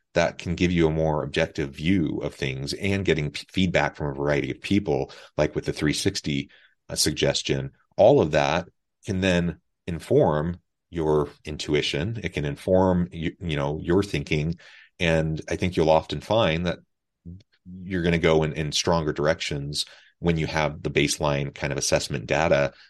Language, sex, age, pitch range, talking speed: English, male, 30-49, 75-85 Hz, 160 wpm